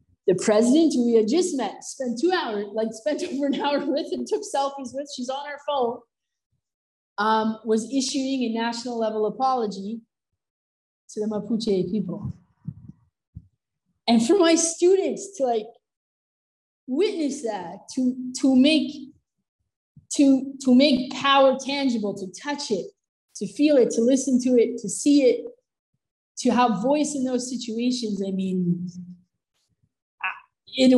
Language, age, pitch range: English, 20-39, 205-260 Hz